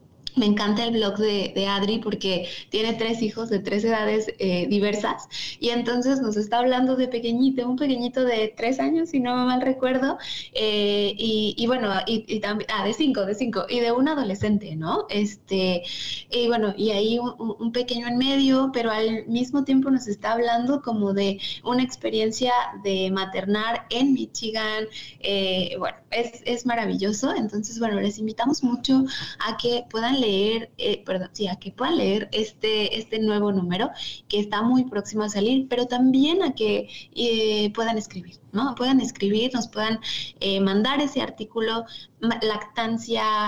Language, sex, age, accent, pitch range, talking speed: Spanish, female, 20-39, Mexican, 205-250 Hz, 170 wpm